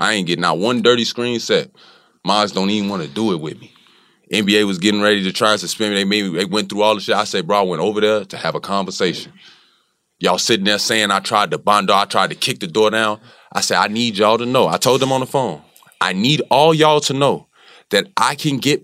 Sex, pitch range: male, 105-165 Hz